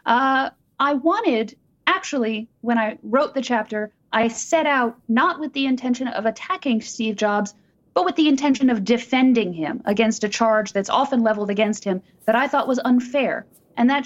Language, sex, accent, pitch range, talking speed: English, female, American, 205-260 Hz, 180 wpm